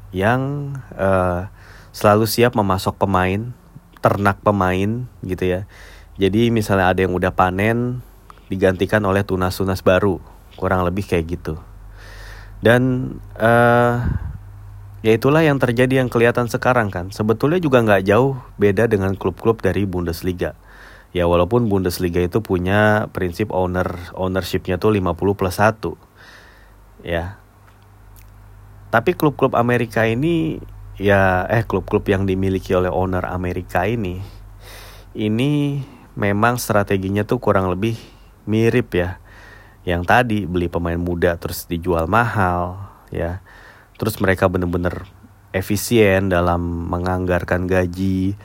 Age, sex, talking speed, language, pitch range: 30-49, male, 115 wpm, Indonesian, 90-110 Hz